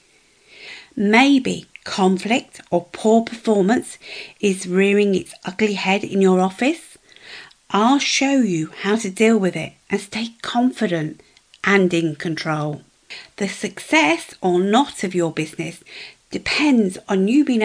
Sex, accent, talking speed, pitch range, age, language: female, British, 130 wpm, 185-260 Hz, 50-69, English